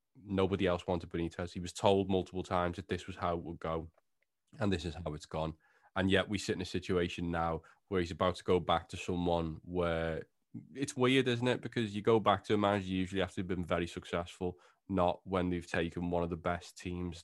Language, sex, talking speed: English, male, 235 wpm